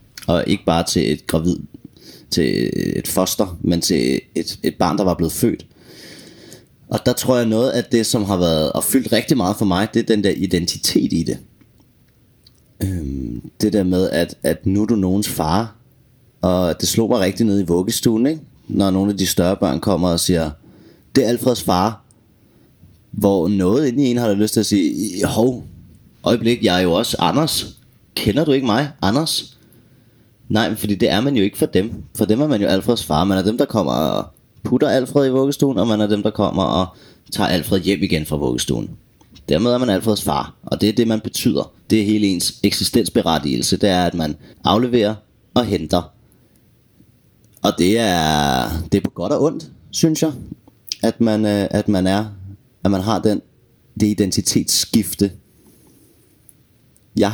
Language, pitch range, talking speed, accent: Danish, 95-120 Hz, 190 wpm, native